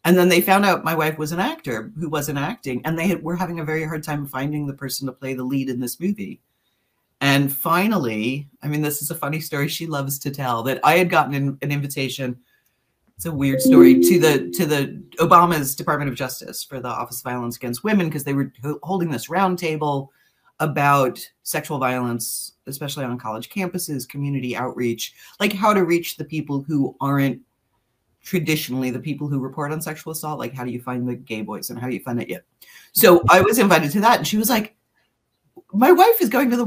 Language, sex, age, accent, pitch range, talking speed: English, female, 40-59, American, 130-185 Hz, 220 wpm